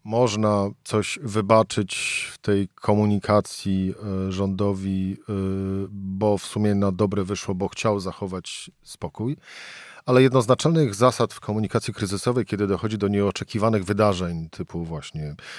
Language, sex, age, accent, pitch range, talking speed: Polish, male, 40-59, native, 100-120 Hz, 115 wpm